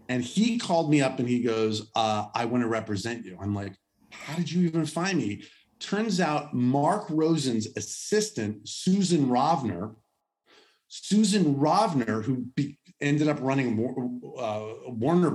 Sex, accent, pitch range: male, American, 110-150 Hz